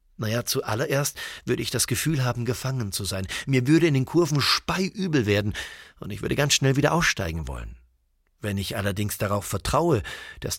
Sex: male